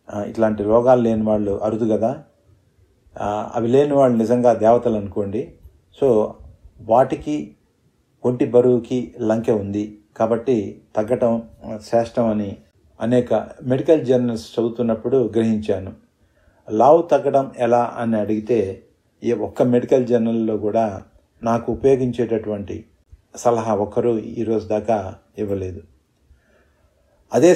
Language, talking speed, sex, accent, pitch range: Telugu, 95 wpm, male, native, 105-125 Hz